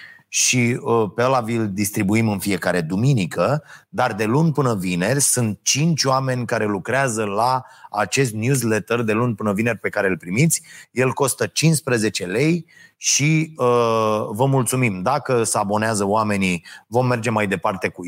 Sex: male